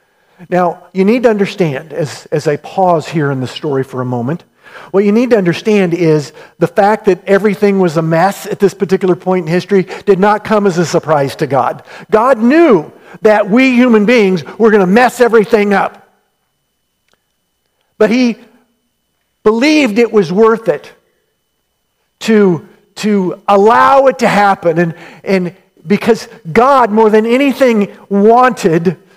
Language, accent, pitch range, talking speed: English, American, 170-225 Hz, 155 wpm